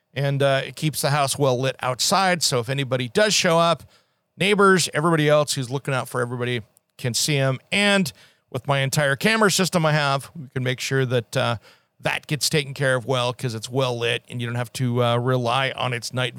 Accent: American